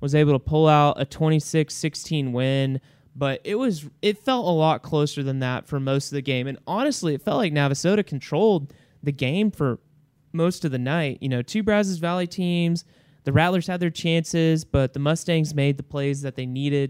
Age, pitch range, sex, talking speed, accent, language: 30-49, 135-170 Hz, male, 200 wpm, American, English